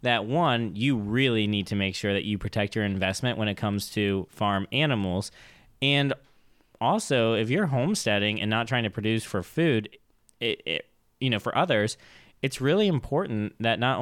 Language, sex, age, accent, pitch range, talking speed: English, male, 20-39, American, 105-125 Hz, 170 wpm